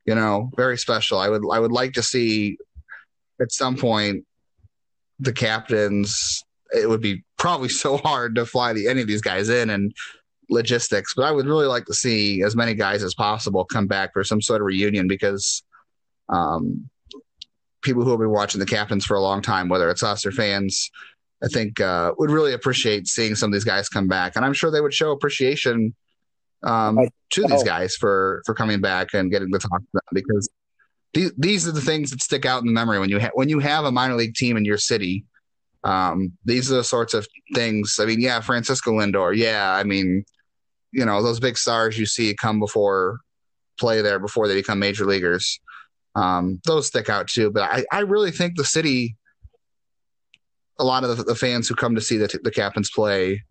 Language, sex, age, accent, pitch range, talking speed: English, male, 30-49, American, 100-125 Hz, 205 wpm